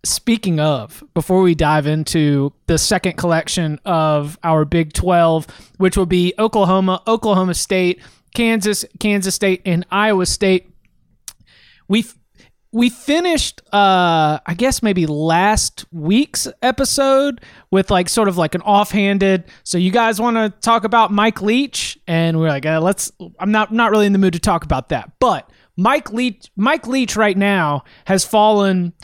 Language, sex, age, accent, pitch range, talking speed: English, male, 30-49, American, 170-215 Hz, 155 wpm